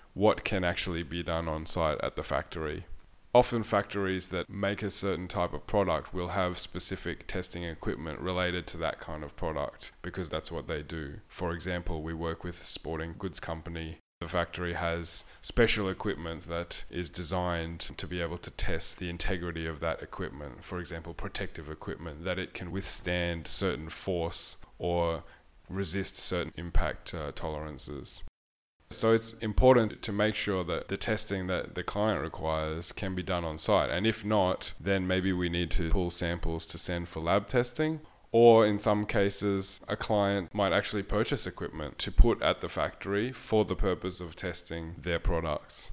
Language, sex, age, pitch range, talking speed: English, male, 20-39, 85-100 Hz, 170 wpm